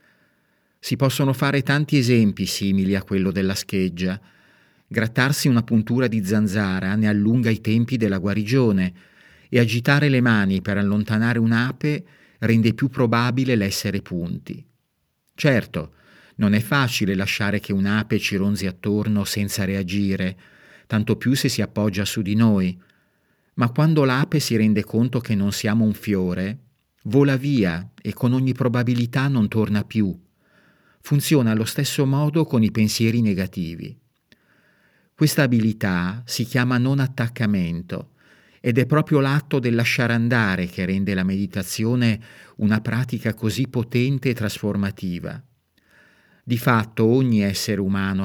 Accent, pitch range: native, 100-125 Hz